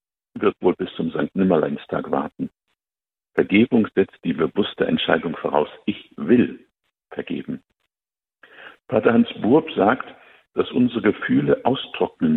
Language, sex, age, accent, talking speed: German, male, 50-69, German, 115 wpm